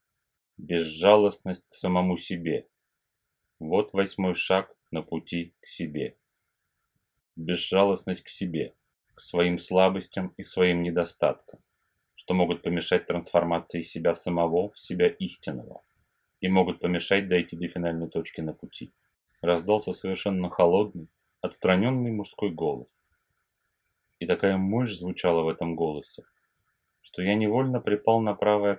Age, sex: 30-49, male